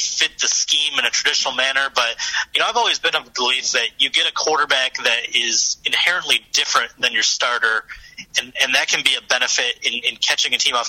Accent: American